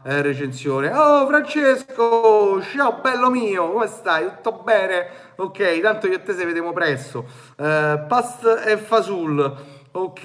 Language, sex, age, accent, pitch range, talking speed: Italian, male, 30-49, native, 155-260 Hz, 125 wpm